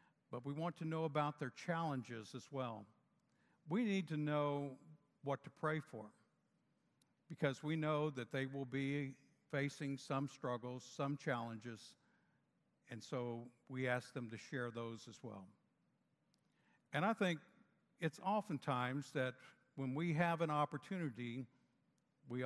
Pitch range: 125-155 Hz